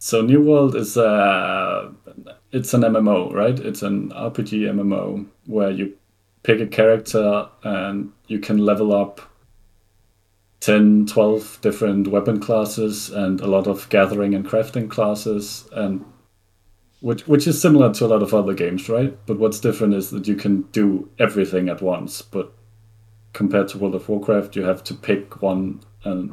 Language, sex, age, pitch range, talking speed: English, male, 30-49, 95-105 Hz, 160 wpm